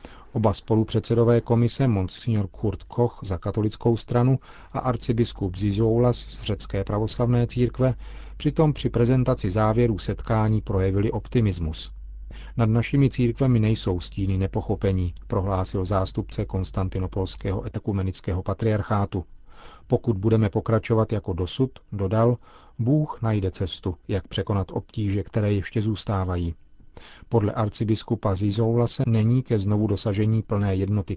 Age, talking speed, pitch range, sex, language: 40-59, 115 wpm, 95-115 Hz, male, Czech